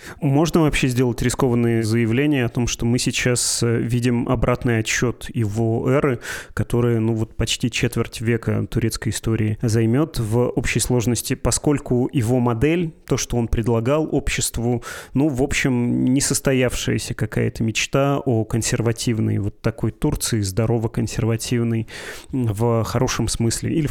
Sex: male